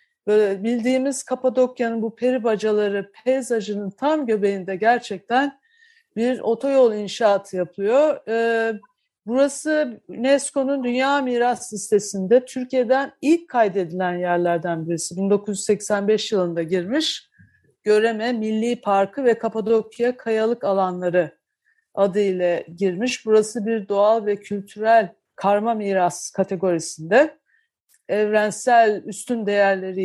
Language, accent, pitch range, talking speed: Turkish, native, 205-255 Hz, 95 wpm